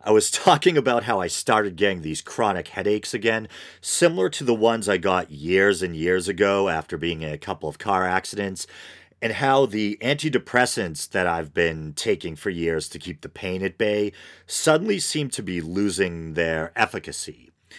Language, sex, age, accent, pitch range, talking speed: English, male, 40-59, American, 85-115 Hz, 180 wpm